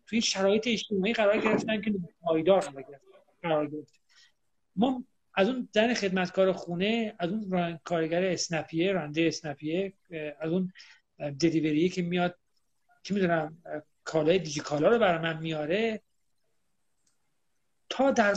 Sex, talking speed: male, 120 wpm